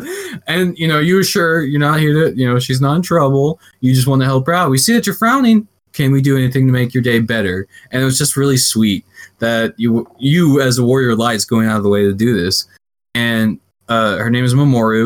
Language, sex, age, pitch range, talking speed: English, male, 20-39, 110-135 Hz, 250 wpm